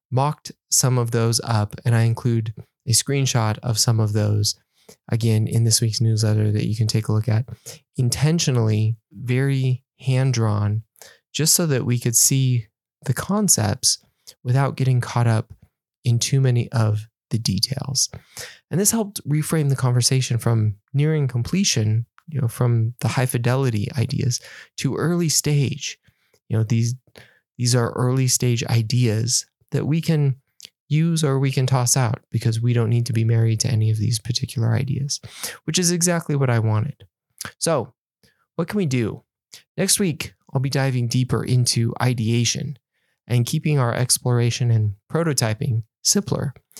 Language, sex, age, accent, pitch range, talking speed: English, male, 20-39, American, 115-140 Hz, 160 wpm